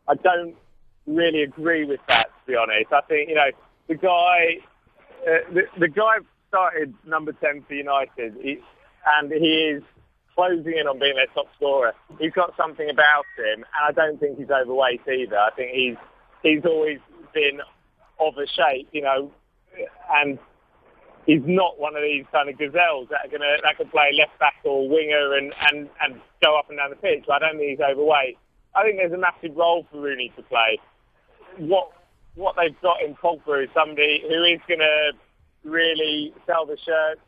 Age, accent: 30-49, British